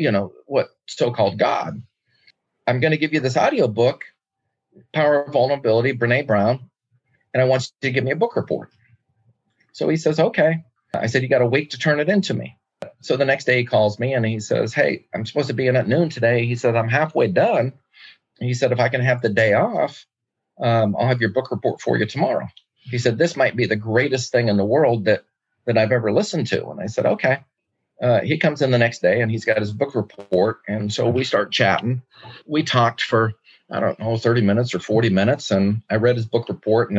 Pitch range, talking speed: 105-130 Hz, 230 wpm